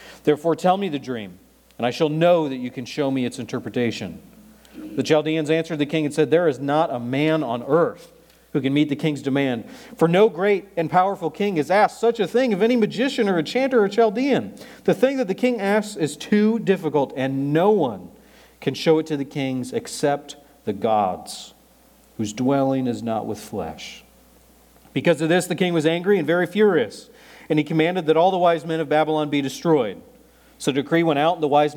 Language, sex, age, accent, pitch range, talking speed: English, male, 40-59, American, 140-195 Hz, 210 wpm